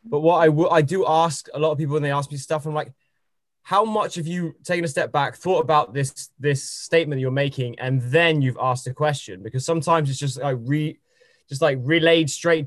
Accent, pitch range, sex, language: British, 135-165 Hz, male, English